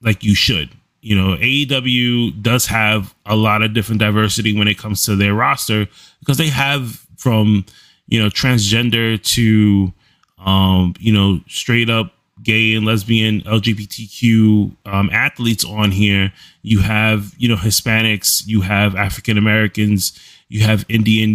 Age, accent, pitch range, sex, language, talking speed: 20-39, American, 105-125 Hz, male, English, 145 wpm